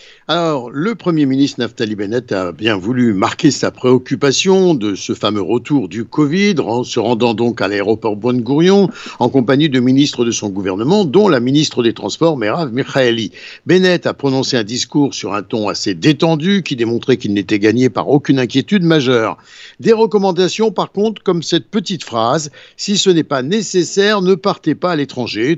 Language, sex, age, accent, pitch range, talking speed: Italian, male, 60-79, French, 125-180 Hz, 180 wpm